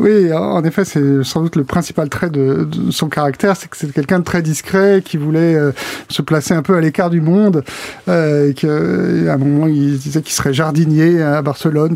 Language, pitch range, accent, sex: French, 150-180 Hz, French, male